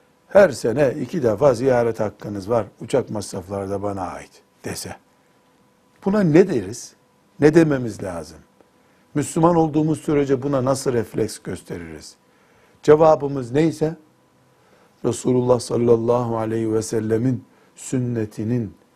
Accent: native